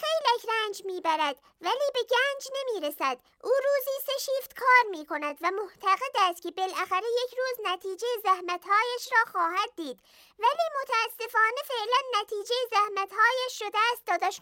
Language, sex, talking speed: Persian, male, 135 wpm